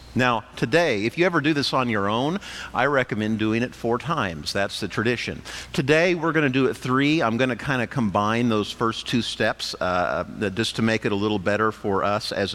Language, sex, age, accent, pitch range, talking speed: English, male, 50-69, American, 115-175 Hz, 210 wpm